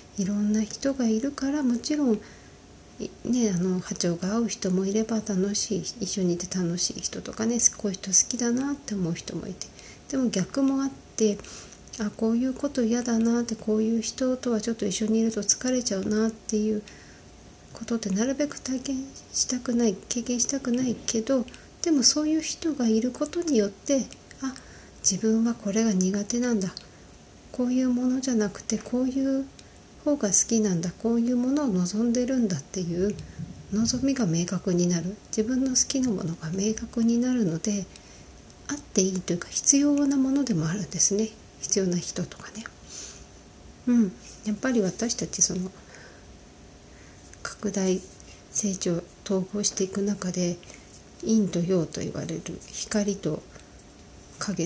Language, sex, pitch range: Japanese, female, 185-245 Hz